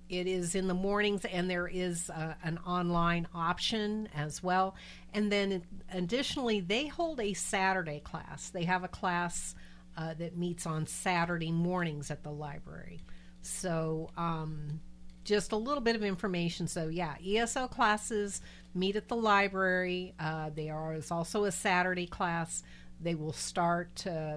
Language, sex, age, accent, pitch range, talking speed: English, female, 50-69, American, 155-190 Hz, 155 wpm